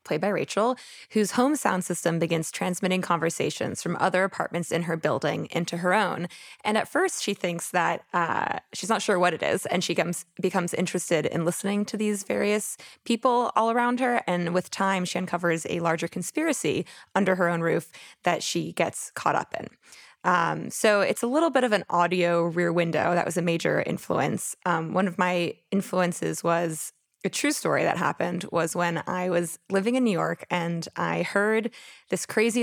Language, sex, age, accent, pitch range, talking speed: English, female, 20-39, American, 175-225 Hz, 190 wpm